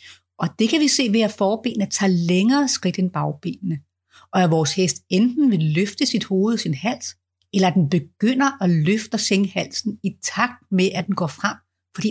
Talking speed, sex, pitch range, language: 205 wpm, female, 155-210 Hz, Danish